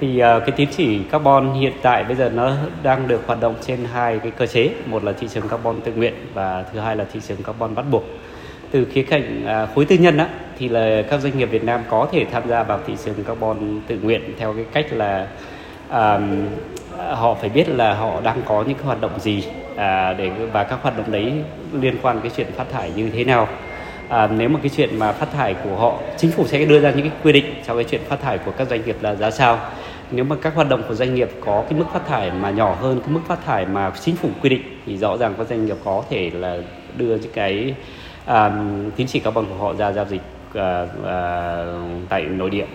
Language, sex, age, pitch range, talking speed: Vietnamese, male, 20-39, 100-135 Hz, 245 wpm